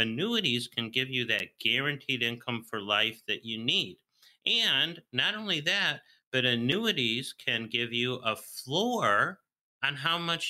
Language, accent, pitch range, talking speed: English, American, 120-165 Hz, 150 wpm